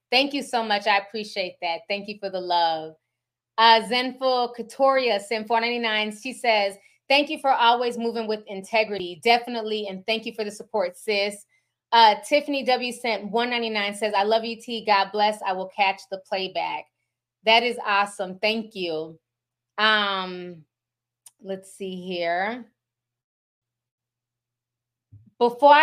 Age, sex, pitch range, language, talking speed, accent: 20-39, female, 165-230 Hz, English, 140 wpm, American